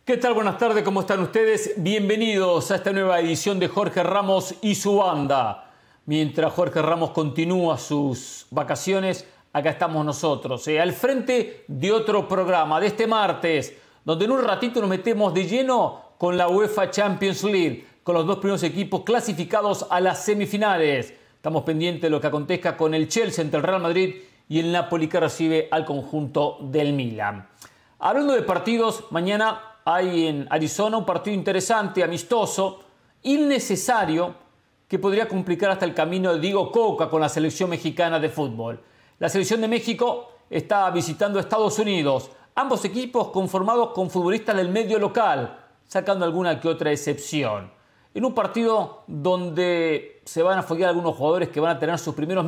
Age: 40-59